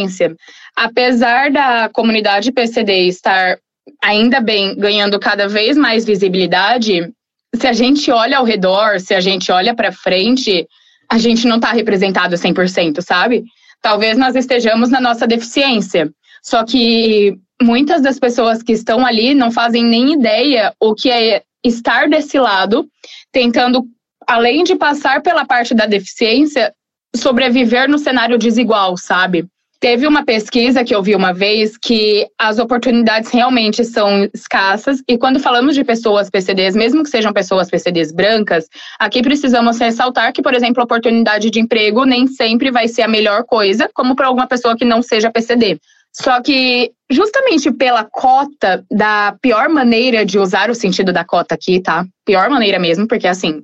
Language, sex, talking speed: Portuguese, female, 155 wpm